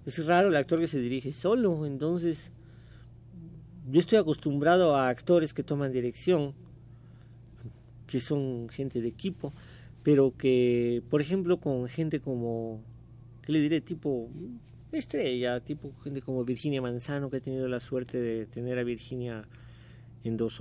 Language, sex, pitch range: Spanish, male, 120-155 Hz